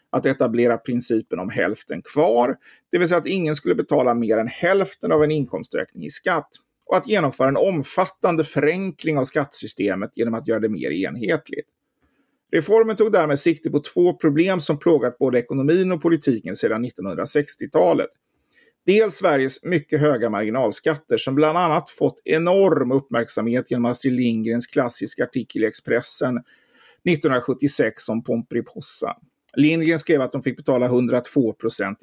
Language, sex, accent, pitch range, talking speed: Swedish, male, native, 125-170 Hz, 145 wpm